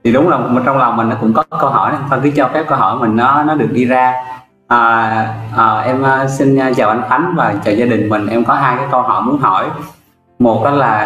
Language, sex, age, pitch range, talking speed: Vietnamese, male, 20-39, 110-145 Hz, 245 wpm